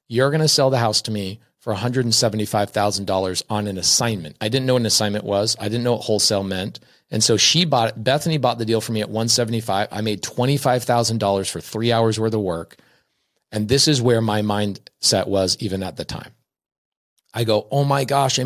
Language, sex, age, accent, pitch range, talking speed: English, male, 40-59, American, 105-135 Hz, 215 wpm